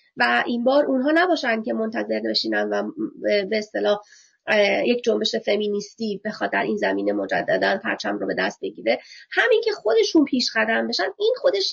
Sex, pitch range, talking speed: female, 220-325 Hz, 160 wpm